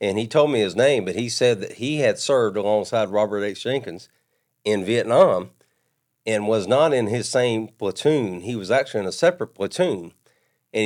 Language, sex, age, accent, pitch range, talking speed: English, male, 50-69, American, 105-130 Hz, 190 wpm